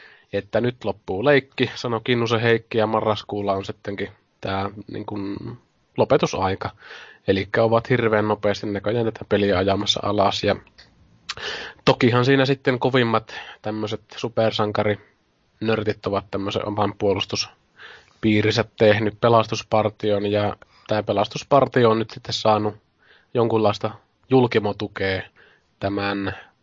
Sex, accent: male, native